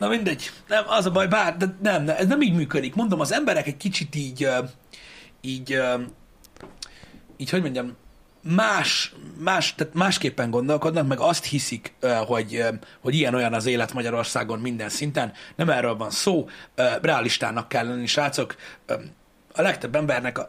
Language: Hungarian